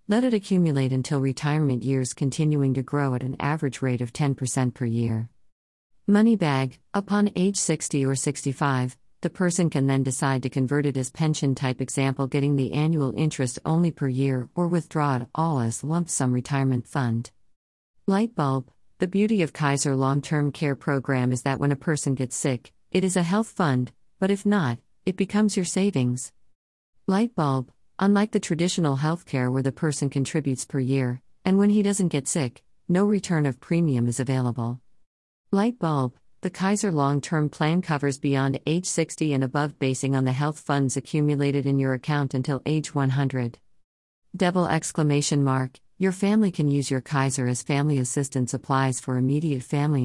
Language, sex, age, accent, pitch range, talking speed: Filipino, female, 50-69, American, 130-165 Hz, 175 wpm